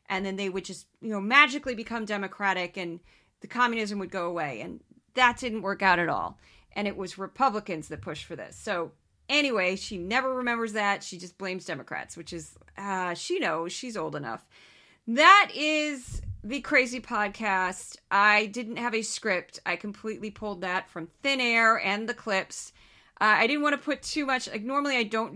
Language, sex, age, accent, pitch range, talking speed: English, female, 30-49, American, 185-235 Hz, 190 wpm